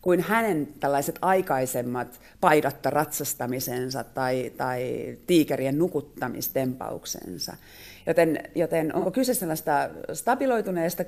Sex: female